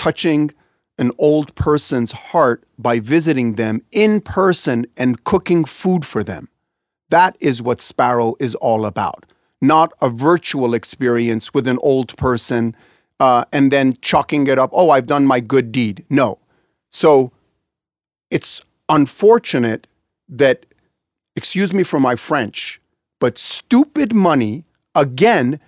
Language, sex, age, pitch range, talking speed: English, male, 40-59, 130-210 Hz, 130 wpm